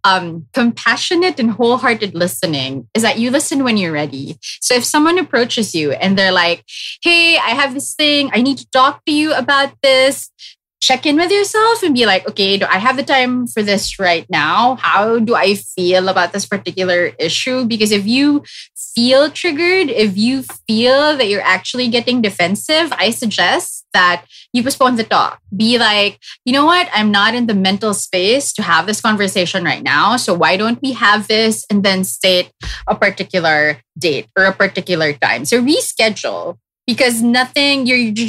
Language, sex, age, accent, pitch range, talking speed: English, female, 20-39, Filipino, 185-260 Hz, 185 wpm